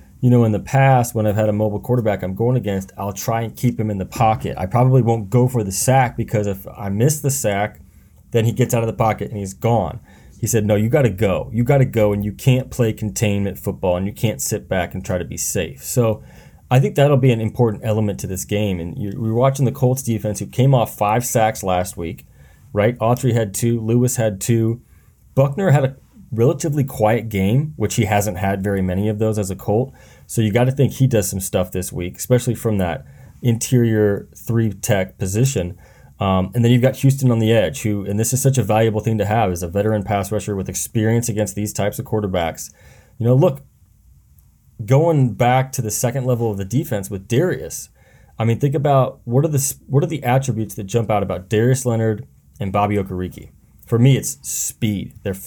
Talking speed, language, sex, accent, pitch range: 225 wpm, English, male, American, 100-125 Hz